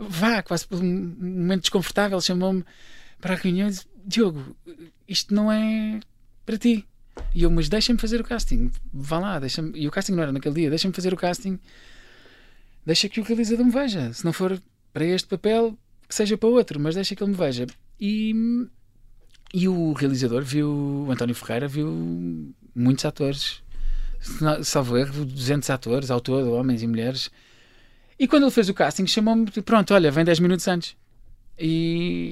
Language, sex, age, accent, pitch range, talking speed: Portuguese, male, 20-39, Portuguese, 135-195 Hz, 175 wpm